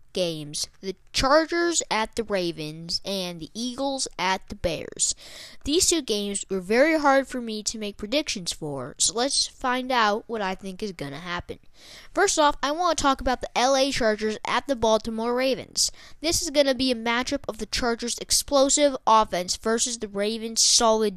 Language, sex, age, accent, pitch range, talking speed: English, female, 10-29, American, 205-270 Hz, 185 wpm